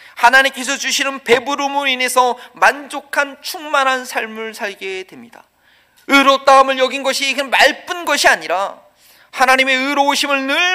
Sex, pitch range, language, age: male, 190-275 Hz, Korean, 40-59